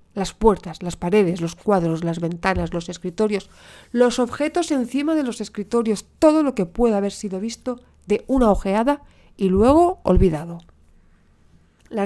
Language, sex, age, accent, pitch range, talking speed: Spanish, female, 40-59, Spanish, 175-230 Hz, 150 wpm